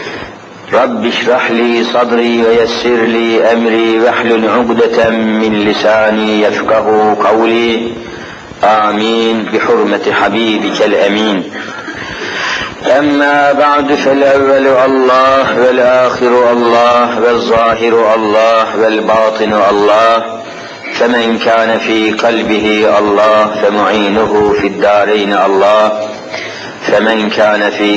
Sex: male